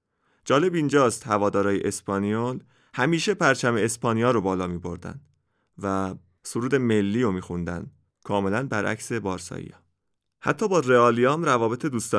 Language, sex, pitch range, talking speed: Persian, male, 100-130 Hz, 115 wpm